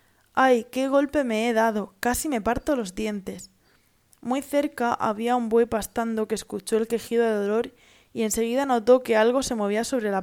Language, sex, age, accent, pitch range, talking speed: Italian, female, 20-39, Spanish, 205-245 Hz, 190 wpm